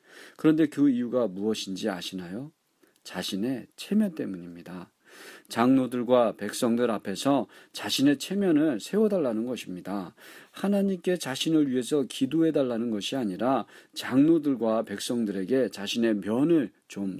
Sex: male